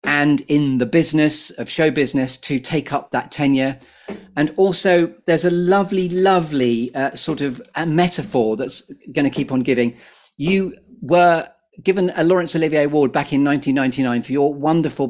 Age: 40-59